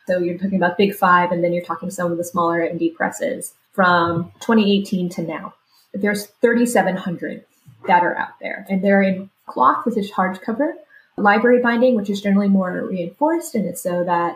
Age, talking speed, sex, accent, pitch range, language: 20-39, 190 wpm, female, American, 185-235 Hz, English